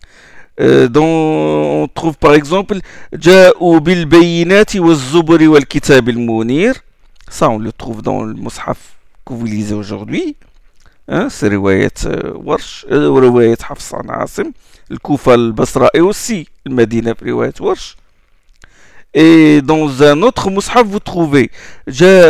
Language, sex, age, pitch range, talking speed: French, male, 50-69, 120-170 Hz, 135 wpm